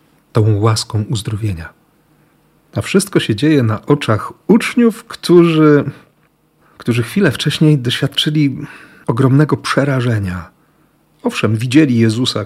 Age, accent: 40-59, native